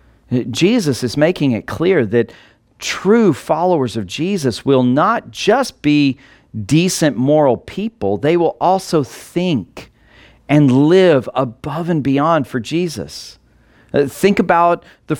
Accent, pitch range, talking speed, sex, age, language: American, 115-165 Hz, 120 wpm, male, 40-59, English